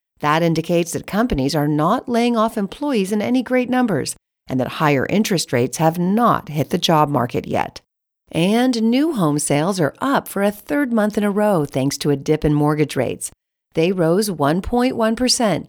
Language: English